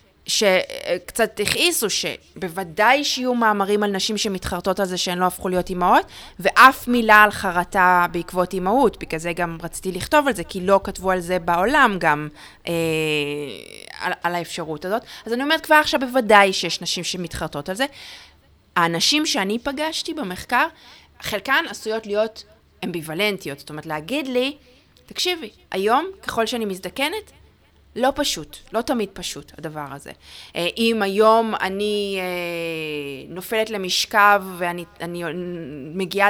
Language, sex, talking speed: Hebrew, female, 135 wpm